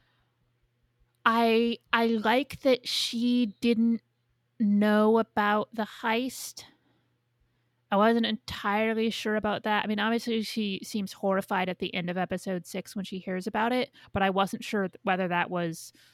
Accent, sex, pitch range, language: American, female, 175-220 Hz, English